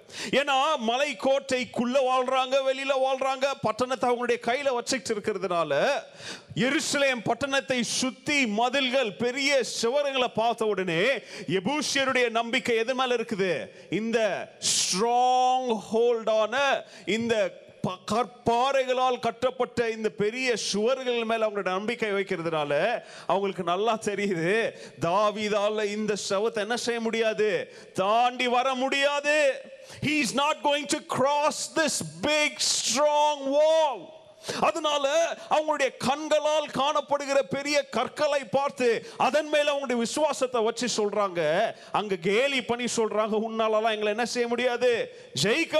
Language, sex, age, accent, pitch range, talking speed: Tamil, male, 30-49, native, 215-280 Hz, 50 wpm